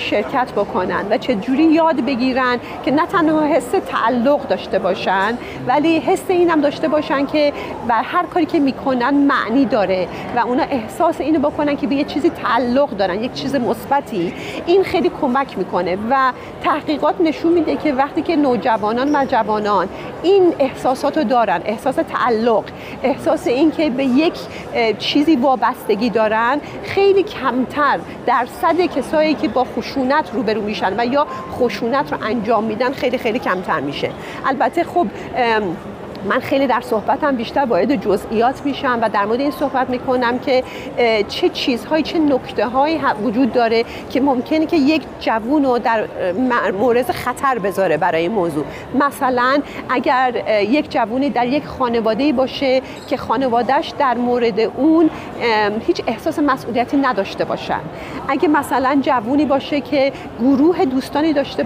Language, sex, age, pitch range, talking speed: Persian, female, 40-59, 235-295 Hz, 150 wpm